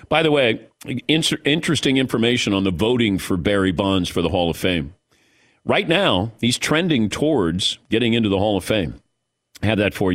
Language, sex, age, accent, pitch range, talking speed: English, male, 50-69, American, 105-135 Hz, 185 wpm